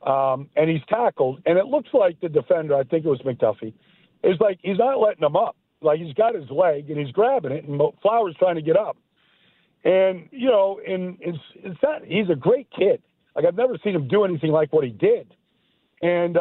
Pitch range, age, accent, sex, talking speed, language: 150-230 Hz, 50-69, American, male, 210 wpm, English